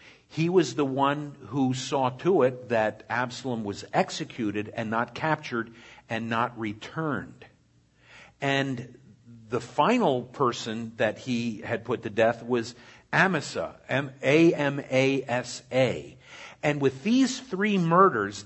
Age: 50-69